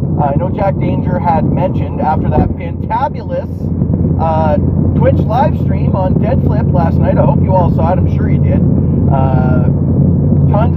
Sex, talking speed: male, 175 wpm